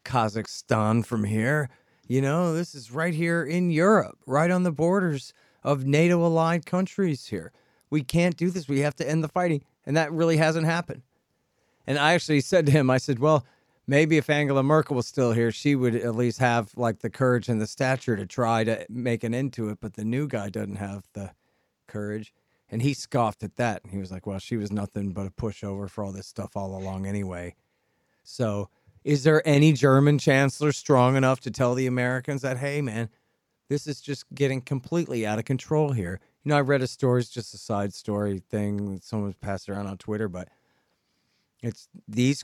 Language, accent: English, American